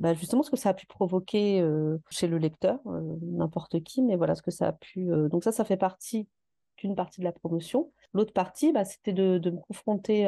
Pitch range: 170-200 Hz